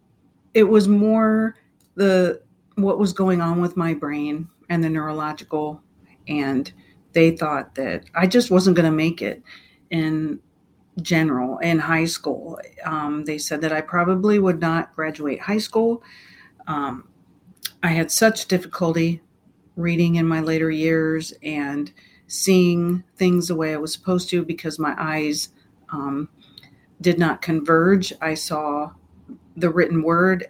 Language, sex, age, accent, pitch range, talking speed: English, female, 50-69, American, 155-185 Hz, 140 wpm